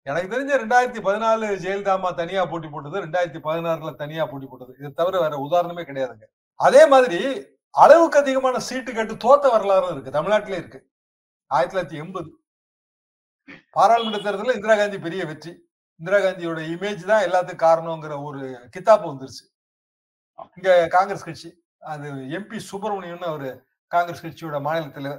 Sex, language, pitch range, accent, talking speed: male, Tamil, 155-205 Hz, native, 130 wpm